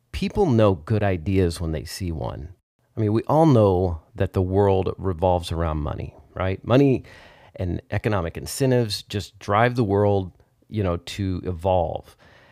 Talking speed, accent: 155 wpm, American